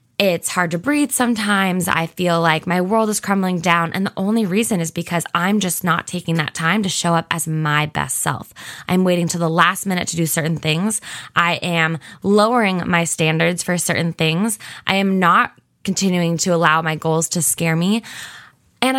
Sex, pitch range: female, 160-195 Hz